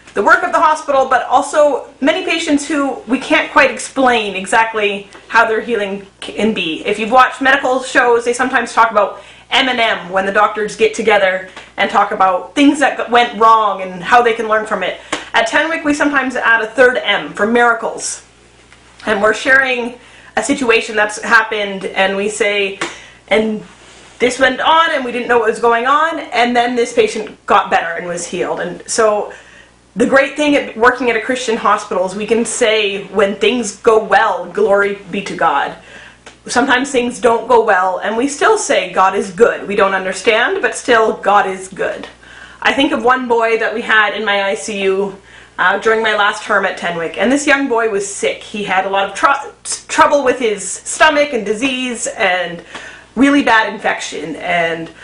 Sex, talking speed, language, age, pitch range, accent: female, 190 wpm, English, 30-49, 200-255 Hz, American